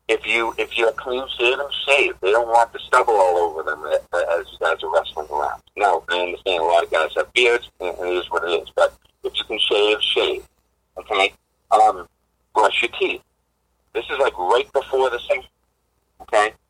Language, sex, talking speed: English, male, 205 wpm